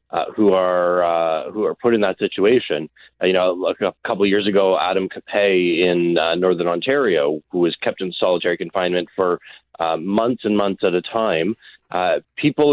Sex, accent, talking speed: male, American, 195 wpm